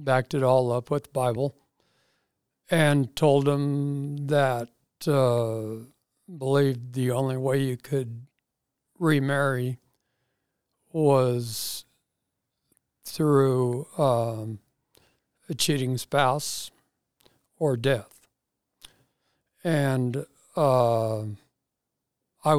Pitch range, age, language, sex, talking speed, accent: 125-155 Hz, 60-79, English, male, 80 wpm, American